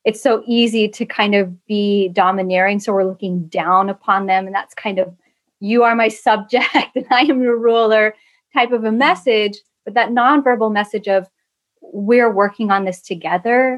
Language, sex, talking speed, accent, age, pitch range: English, female, 180 wpm, American, 30-49, 195-235 Hz